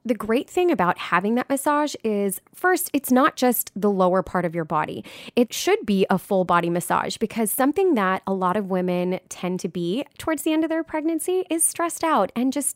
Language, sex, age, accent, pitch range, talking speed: English, female, 20-39, American, 180-255 Hz, 215 wpm